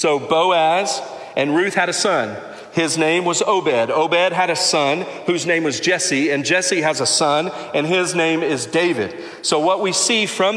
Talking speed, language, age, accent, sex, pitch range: 195 wpm, English, 40-59, American, male, 135-180 Hz